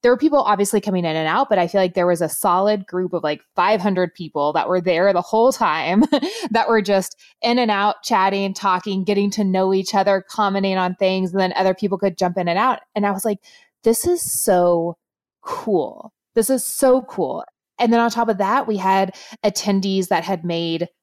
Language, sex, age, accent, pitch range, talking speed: English, female, 20-39, American, 185-230 Hz, 215 wpm